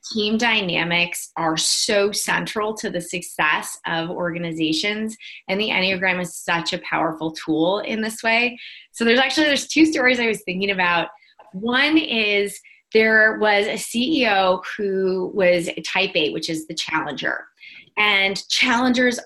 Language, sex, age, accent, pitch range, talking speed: English, female, 20-39, American, 180-230 Hz, 150 wpm